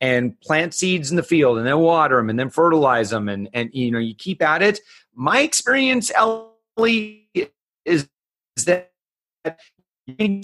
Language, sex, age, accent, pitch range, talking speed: English, male, 40-59, American, 140-195 Hz, 170 wpm